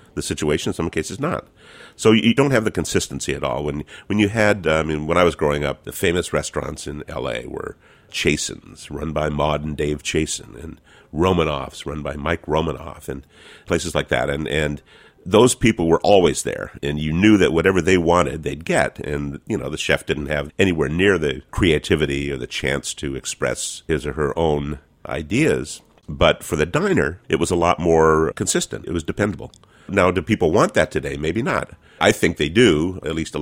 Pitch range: 75-90 Hz